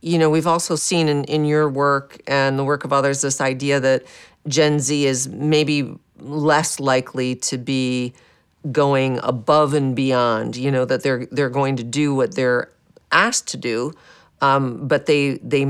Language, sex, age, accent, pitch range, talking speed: English, female, 50-69, American, 125-145 Hz, 175 wpm